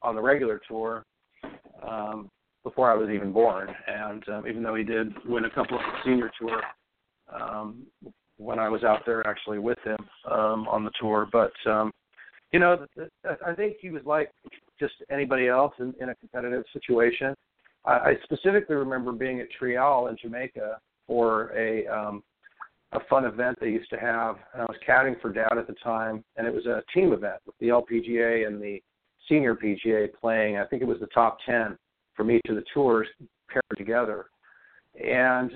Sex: male